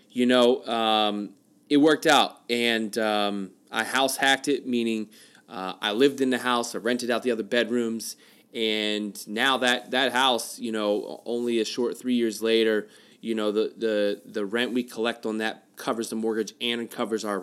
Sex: male